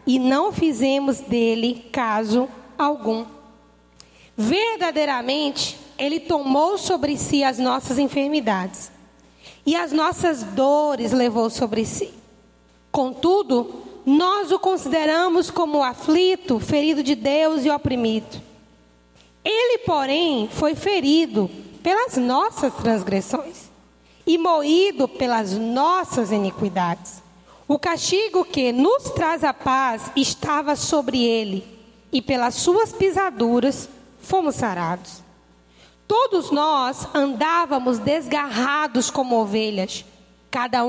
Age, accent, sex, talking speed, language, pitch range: 20-39, Brazilian, female, 100 wpm, Portuguese, 235-320 Hz